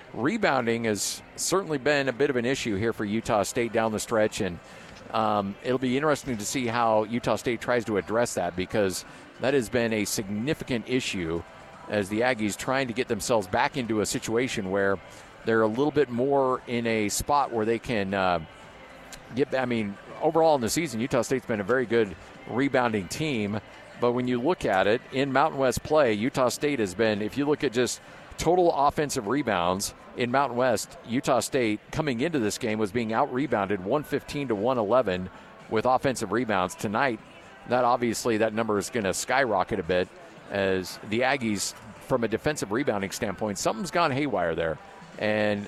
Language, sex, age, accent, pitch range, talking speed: English, male, 50-69, American, 110-135 Hz, 180 wpm